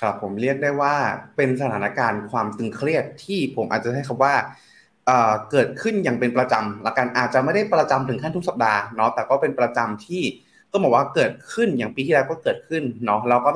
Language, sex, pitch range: Thai, male, 120-160 Hz